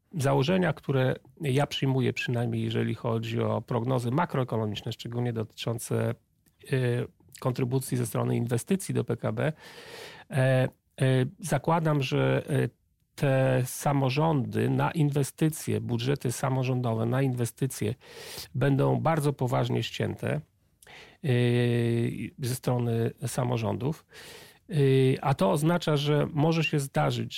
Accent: native